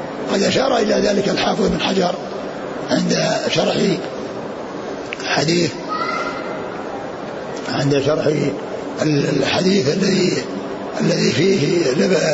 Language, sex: Arabic, male